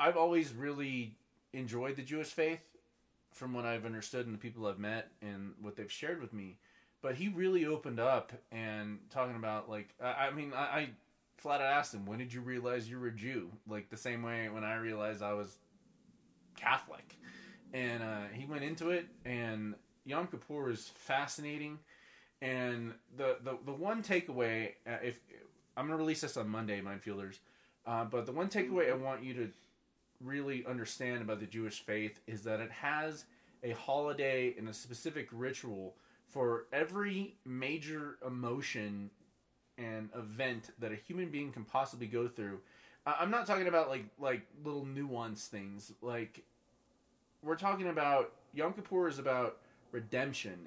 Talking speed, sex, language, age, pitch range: 165 wpm, male, English, 20-39, 110-145 Hz